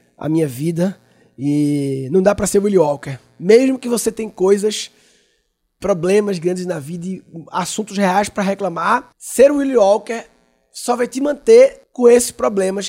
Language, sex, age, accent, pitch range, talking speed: Portuguese, male, 20-39, Brazilian, 180-240 Hz, 165 wpm